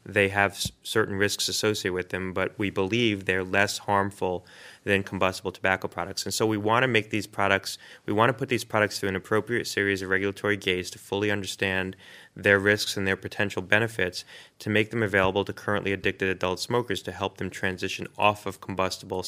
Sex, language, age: male, English, 30-49